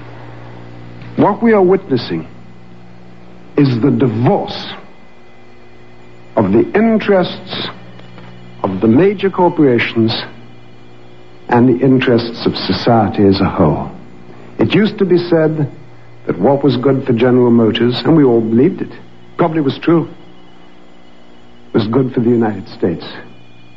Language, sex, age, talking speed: English, male, 60-79, 120 wpm